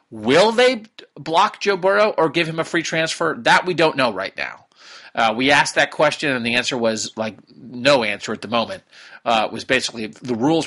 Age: 40-59